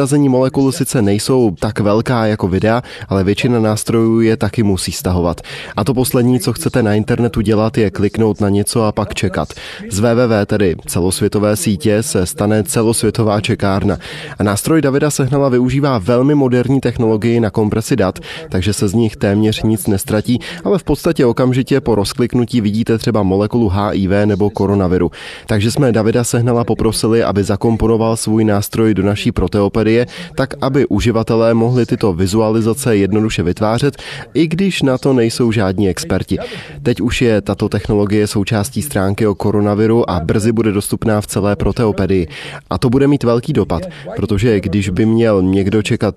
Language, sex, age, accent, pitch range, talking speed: Czech, male, 20-39, native, 105-120 Hz, 160 wpm